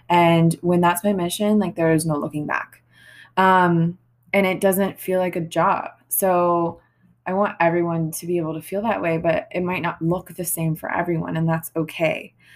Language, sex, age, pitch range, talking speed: English, female, 20-39, 165-195 Hz, 195 wpm